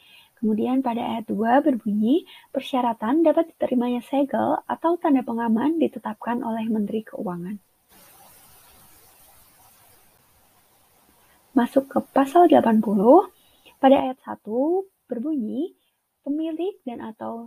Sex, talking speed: female, 95 wpm